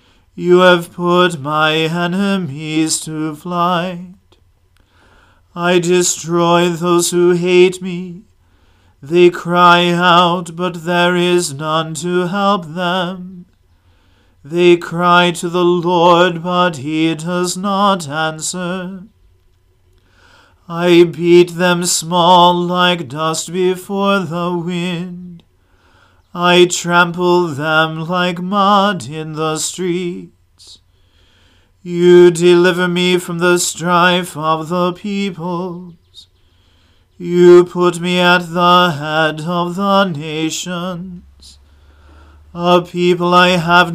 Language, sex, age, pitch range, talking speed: English, male, 40-59, 155-180 Hz, 100 wpm